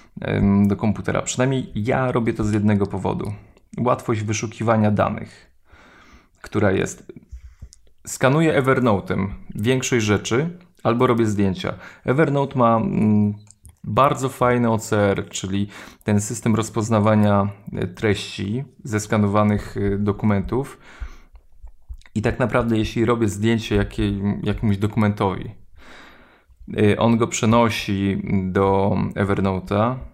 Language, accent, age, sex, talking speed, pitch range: Polish, native, 20-39, male, 95 wpm, 100-115 Hz